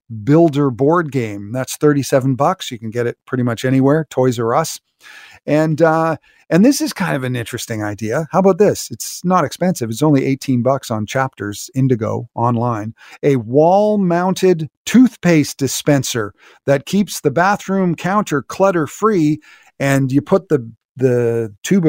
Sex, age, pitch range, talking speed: male, 40-59, 125-165 Hz, 155 wpm